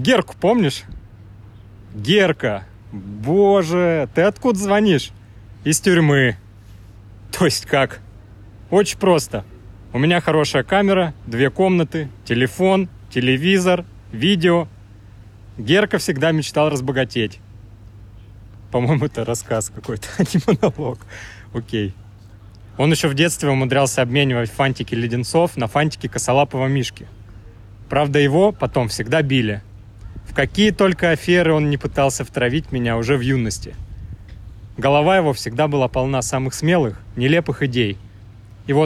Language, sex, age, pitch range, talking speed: Russian, male, 30-49, 105-155 Hz, 115 wpm